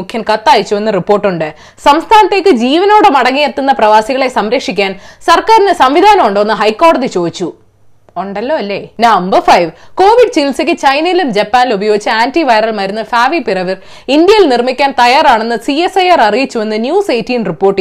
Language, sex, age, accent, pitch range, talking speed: Malayalam, female, 20-39, native, 220-335 Hz, 110 wpm